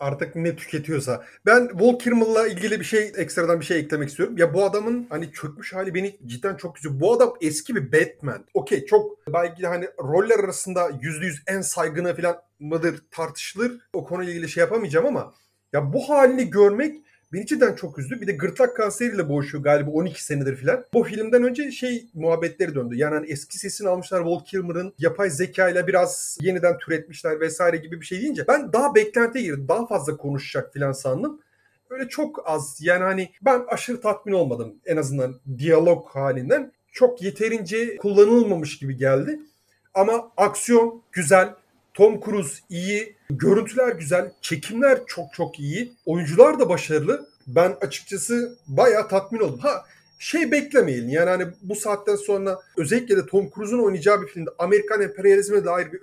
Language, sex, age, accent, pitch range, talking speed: Turkish, male, 30-49, native, 160-230 Hz, 165 wpm